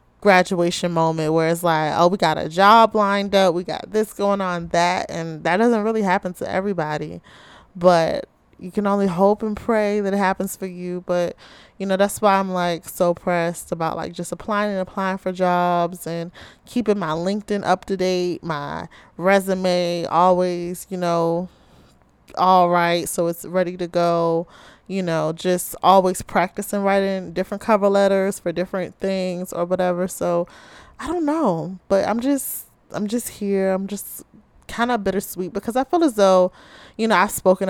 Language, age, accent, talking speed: English, 20-39, American, 175 wpm